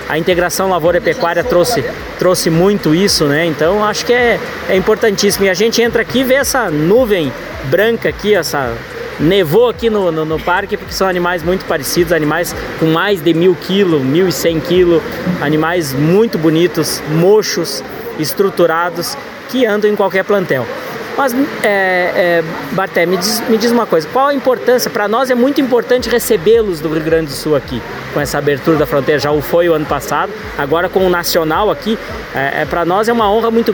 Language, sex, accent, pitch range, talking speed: Portuguese, male, Brazilian, 165-220 Hz, 185 wpm